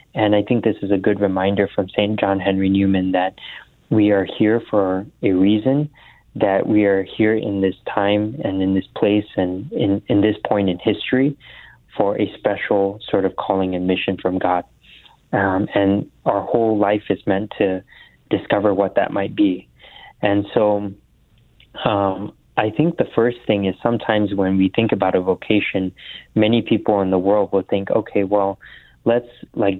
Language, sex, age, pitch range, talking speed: English, male, 30-49, 95-110 Hz, 175 wpm